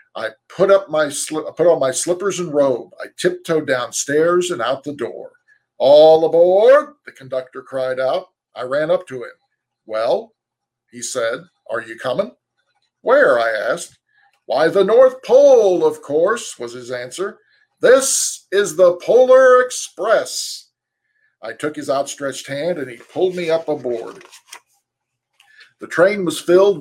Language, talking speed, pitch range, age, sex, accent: English, 150 wpm, 140-195 Hz, 50-69, male, American